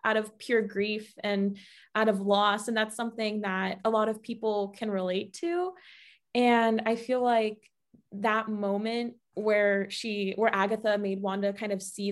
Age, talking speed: 20-39, 170 wpm